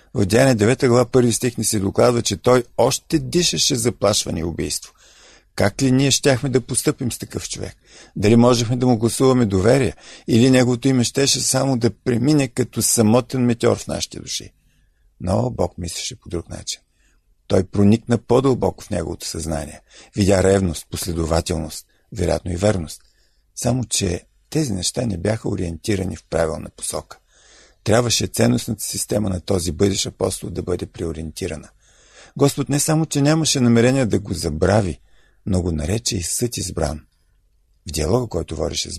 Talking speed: 150 wpm